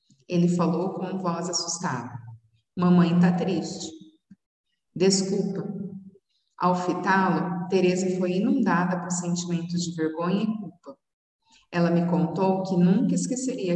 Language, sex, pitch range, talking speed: Portuguese, female, 170-195 Hz, 115 wpm